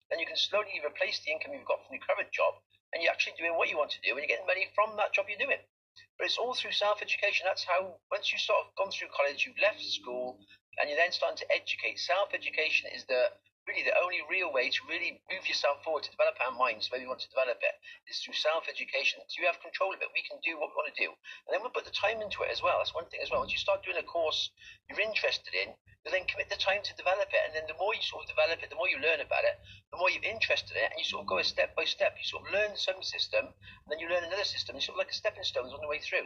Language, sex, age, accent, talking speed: English, male, 40-59, British, 295 wpm